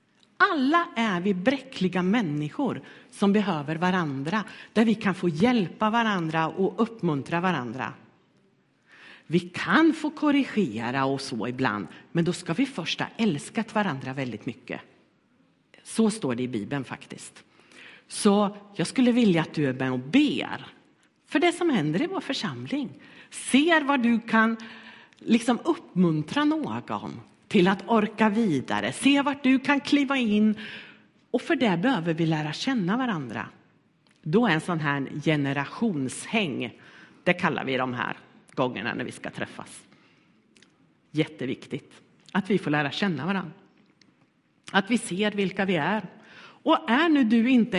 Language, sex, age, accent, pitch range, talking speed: Swedish, female, 50-69, native, 165-260 Hz, 145 wpm